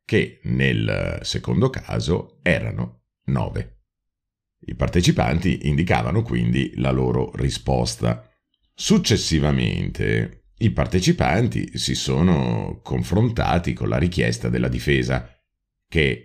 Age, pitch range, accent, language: 50-69, 65-90 Hz, native, Italian